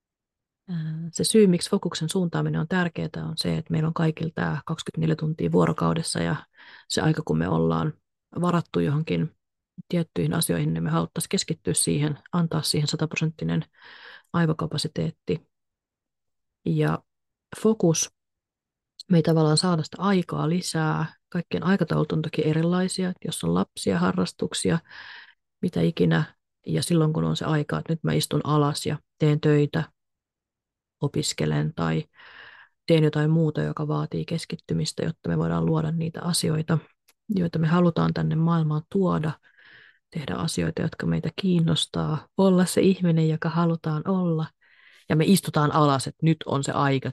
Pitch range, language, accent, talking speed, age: 140-165 Hz, Finnish, native, 140 wpm, 30-49